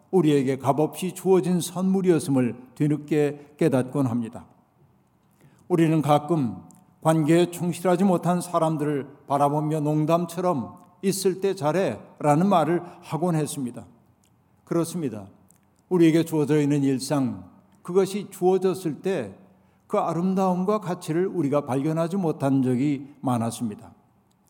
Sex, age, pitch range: male, 50-69, 145-175 Hz